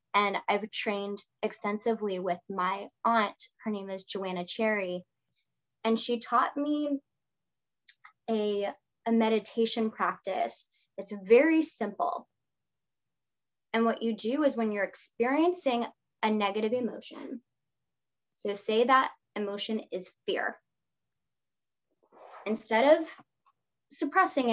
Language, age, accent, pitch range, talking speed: English, 10-29, American, 205-265 Hz, 105 wpm